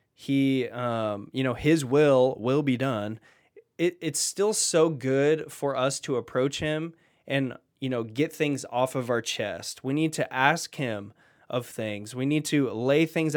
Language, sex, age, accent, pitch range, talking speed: English, male, 20-39, American, 120-150 Hz, 175 wpm